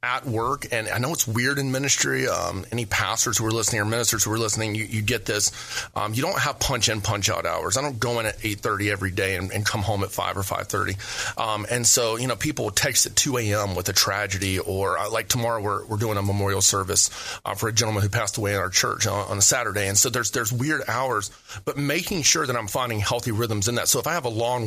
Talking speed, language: 265 wpm, English